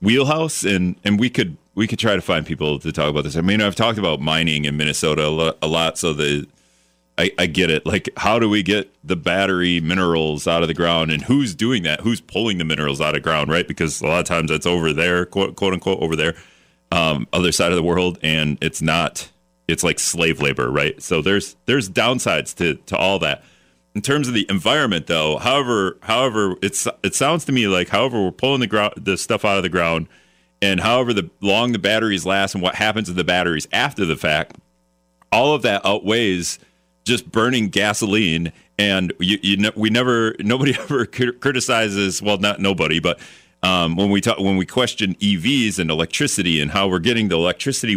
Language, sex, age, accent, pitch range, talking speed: English, male, 30-49, American, 80-115 Hz, 210 wpm